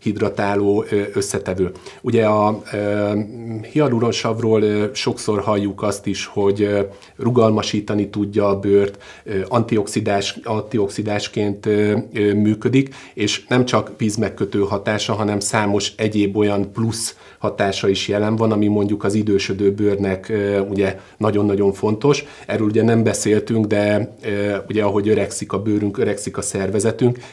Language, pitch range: Hungarian, 100-110 Hz